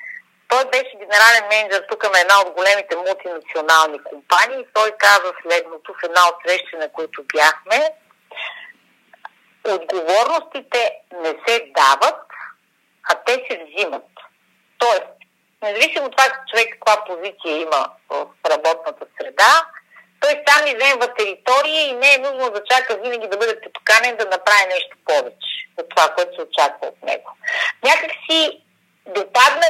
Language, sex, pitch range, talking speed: Bulgarian, female, 210-305 Hz, 135 wpm